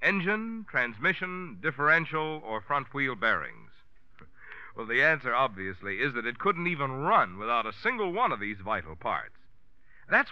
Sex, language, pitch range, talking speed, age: male, English, 130-190 Hz, 145 wpm, 60-79